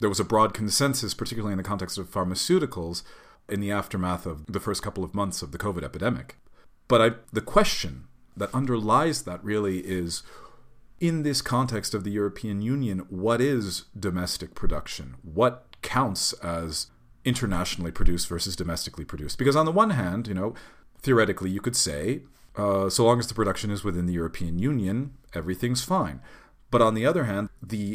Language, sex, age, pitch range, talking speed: English, male, 40-59, 90-120 Hz, 175 wpm